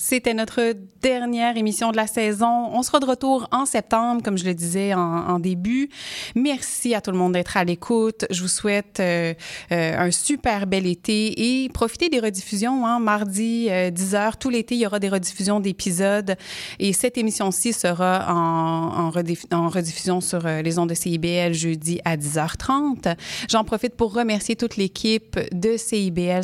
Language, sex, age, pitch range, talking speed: French, female, 30-49, 175-225 Hz, 170 wpm